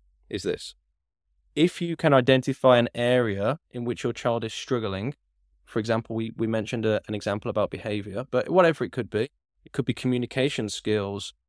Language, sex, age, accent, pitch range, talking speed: English, male, 10-29, British, 105-145 Hz, 180 wpm